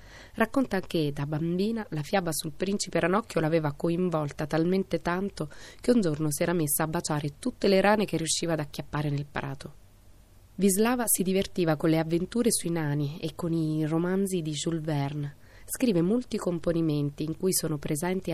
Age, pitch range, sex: 20-39, 140-175 Hz, female